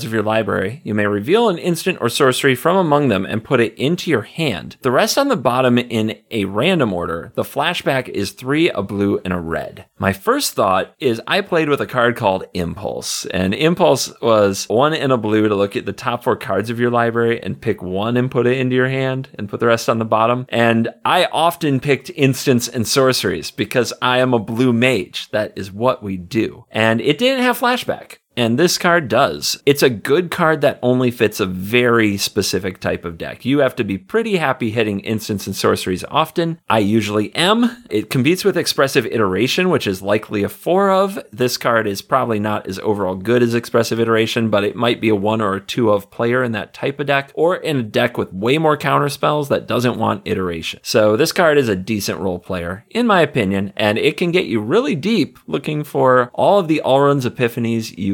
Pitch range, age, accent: 105-145 Hz, 40-59, American